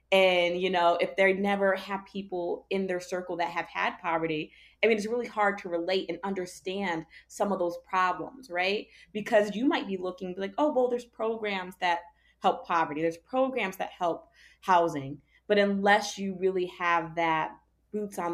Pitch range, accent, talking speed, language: 165-210 Hz, American, 180 wpm, English